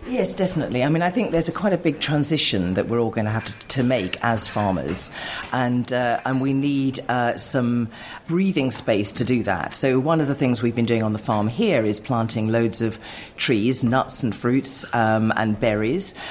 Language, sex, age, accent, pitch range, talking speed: English, female, 40-59, British, 105-140 Hz, 215 wpm